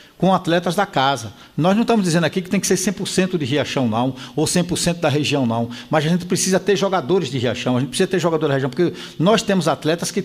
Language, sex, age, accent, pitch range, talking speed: Portuguese, male, 60-79, Brazilian, 140-190 Hz, 245 wpm